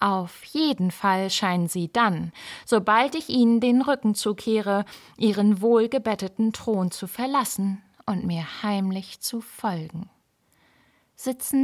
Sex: female